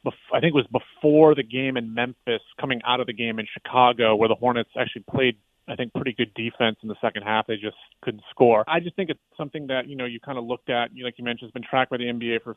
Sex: male